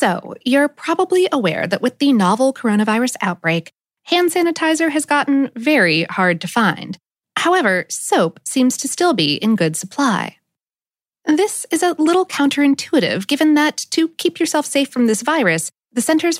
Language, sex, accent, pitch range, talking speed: English, female, American, 195-290 Hz, 155 wpm